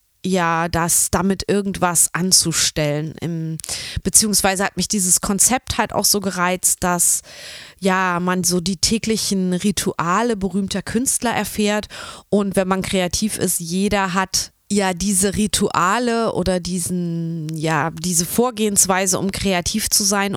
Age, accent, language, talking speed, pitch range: 20-39, German, German, 125 wpm, 180-215 Hz